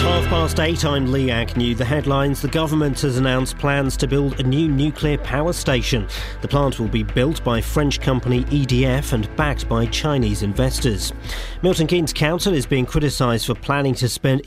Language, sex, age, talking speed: English, male, 40-59, 185 wpm